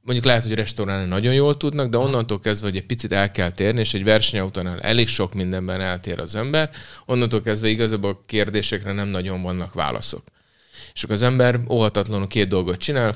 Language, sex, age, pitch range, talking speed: Hungarian, male, 30-49, 95-115 Hz, 190 wpm